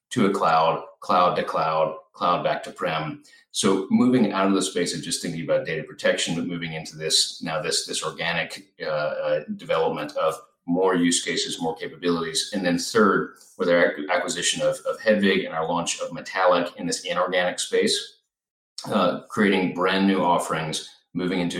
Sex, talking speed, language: male, 180 wpm, English